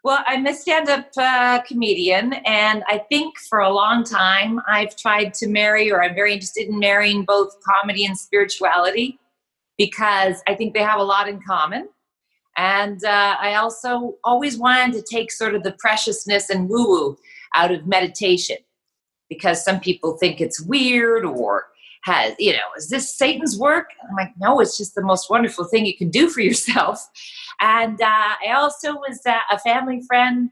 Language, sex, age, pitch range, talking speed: English, female, 40-59, 195-245 Hz, 175 wpm